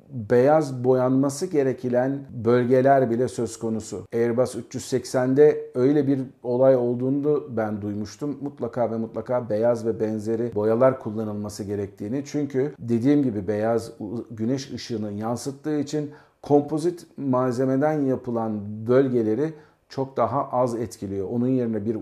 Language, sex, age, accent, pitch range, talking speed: Turkish, male, 50-69, native, 115-140 Hz, 115 wpm